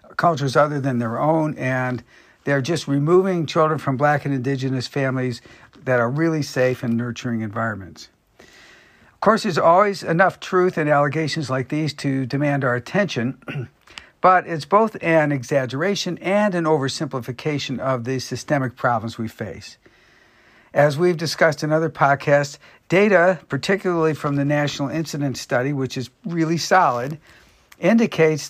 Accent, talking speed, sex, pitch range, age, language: American, 145 wpm, male, 130-160 Hz, 60-79, English